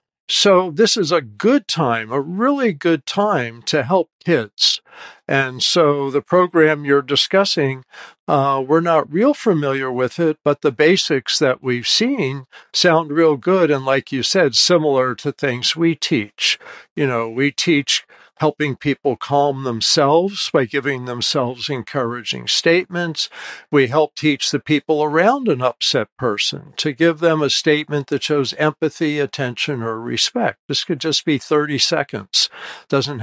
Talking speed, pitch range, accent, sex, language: 150 wpm, 135-170 Hz, American, male, English